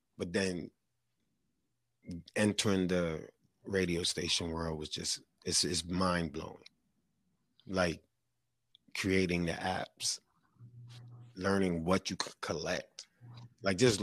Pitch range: 90-120 Hz